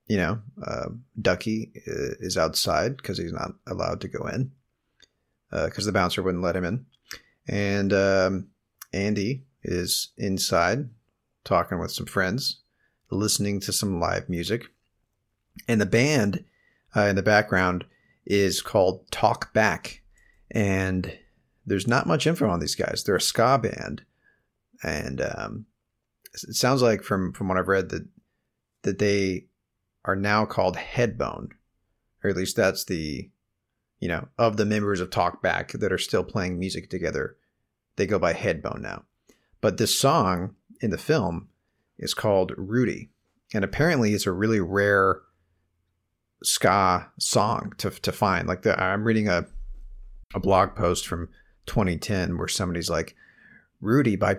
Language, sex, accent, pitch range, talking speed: English, male, American, 90-110 Hz, 145 wpm